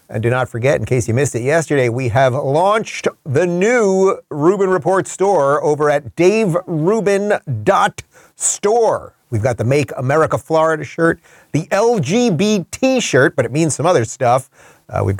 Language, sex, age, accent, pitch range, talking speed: English, male, 40-59, American, 120-175 Hz, 155 wpm